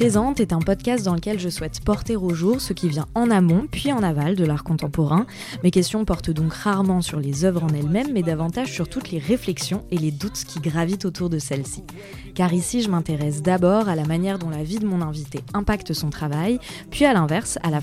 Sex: female